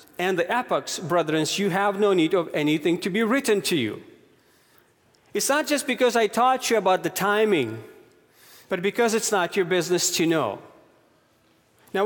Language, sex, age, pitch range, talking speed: English, male, 40-59, 155-215 Hz, 170 wpm